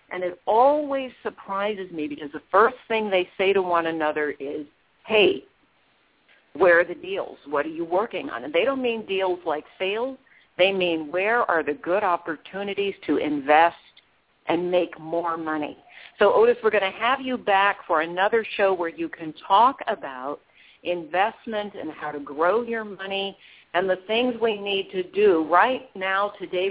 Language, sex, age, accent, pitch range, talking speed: English, female, 50-69, American, 165-220 Hz, 175 wpm